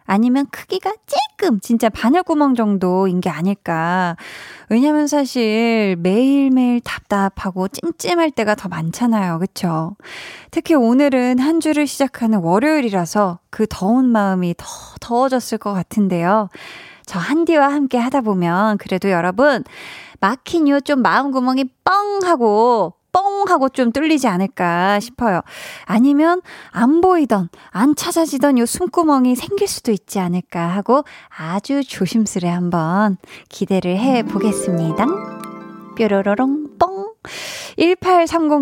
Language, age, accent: Korean, 20-39, native